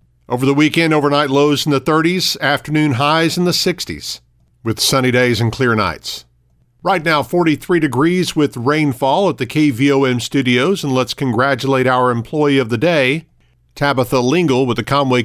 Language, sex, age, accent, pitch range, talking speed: English, male, 50-69, American, 115-140 Hz, 165 wpm